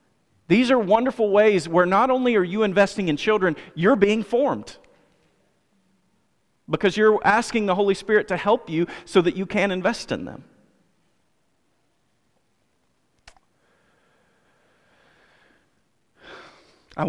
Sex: male